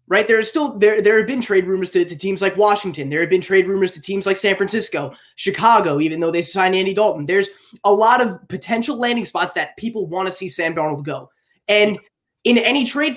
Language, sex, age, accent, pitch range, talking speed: English, male, 20-39, American, 180-235 Hz, 235 wpm